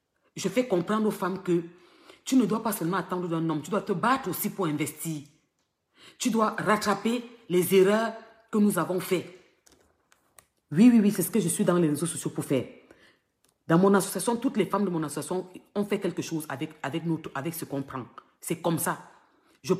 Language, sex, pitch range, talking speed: English, female, 165-220 Hz, 205 wpm